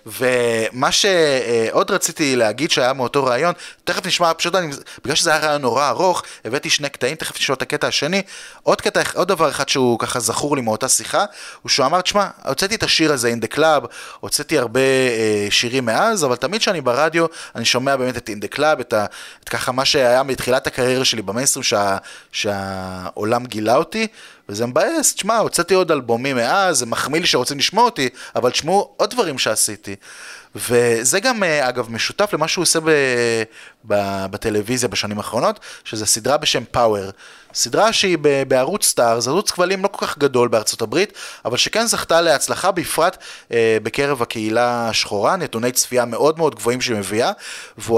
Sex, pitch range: male, 115-165 Hz